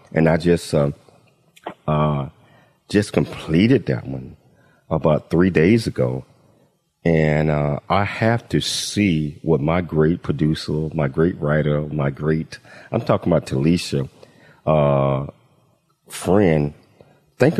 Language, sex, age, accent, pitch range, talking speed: English, male, 40-59, American, 75-110 Hz, 120 wpm